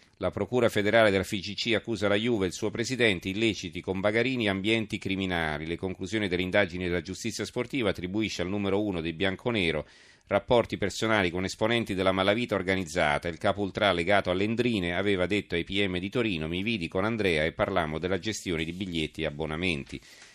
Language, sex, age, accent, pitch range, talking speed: Italian, male, 40-59, native, 90-110 Hz, 175 wpm